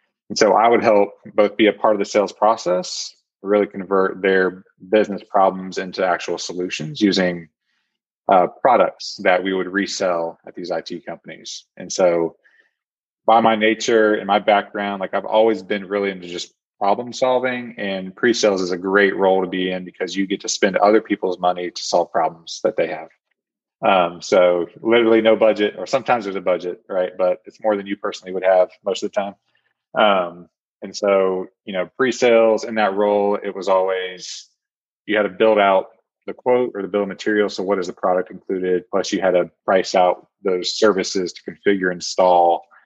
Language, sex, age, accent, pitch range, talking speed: English, male, 20-39, American, 90-105 Hz, 190 wpm